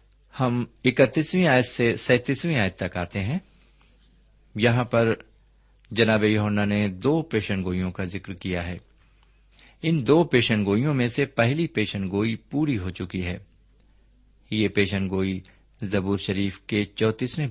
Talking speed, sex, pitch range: 135 wpm, male, 95-130 Hz